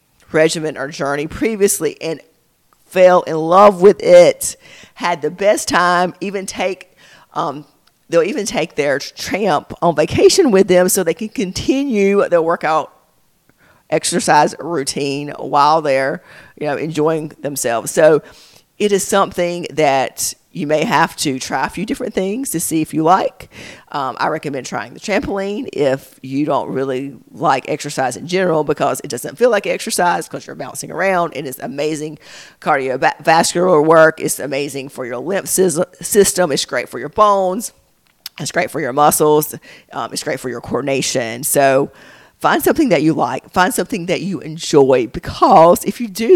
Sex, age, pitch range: female, 40-59, 150-195 Hz